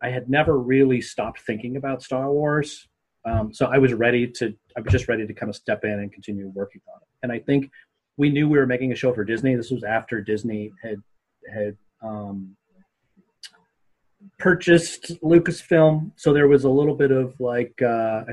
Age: 30-49